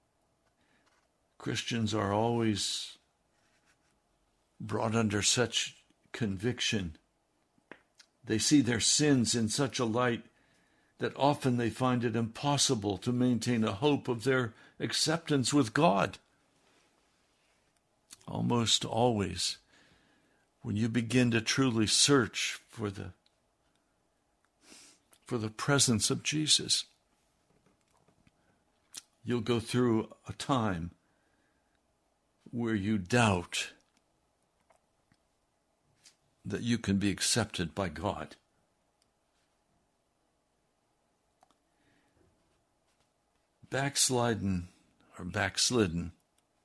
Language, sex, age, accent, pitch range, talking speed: English, male, 60-79, American, 105-135 Hz, 80 wpm